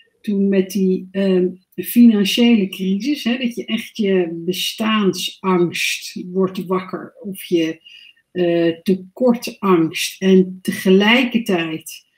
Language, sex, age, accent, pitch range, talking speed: Dutch, female, 60-79, Dutch, 175-215 Hz, 100 wpm